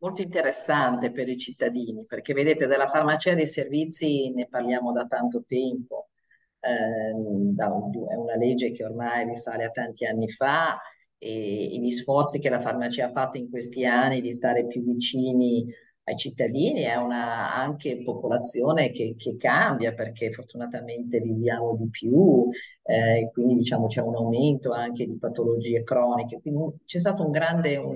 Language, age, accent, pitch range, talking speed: Italian, 40-59, native, 120-160 Hz, 155 wpm